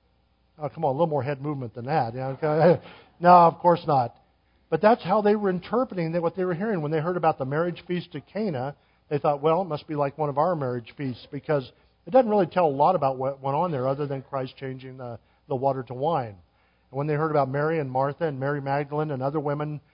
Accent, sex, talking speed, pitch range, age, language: American, male, 245 wpm, 130-160 Hz, 50-69, English